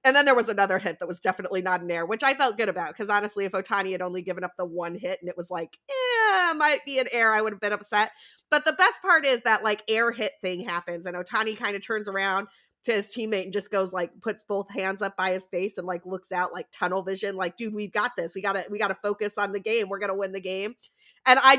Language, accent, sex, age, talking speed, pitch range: English, American, female, 30-49, 285 wpm, 190-245 Hz